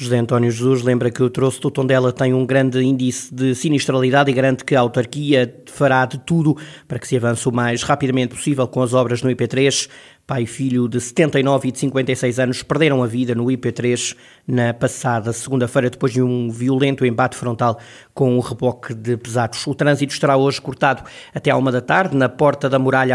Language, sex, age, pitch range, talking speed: Portuguese, male, 20-39, 125-140 Hz, 200 wpm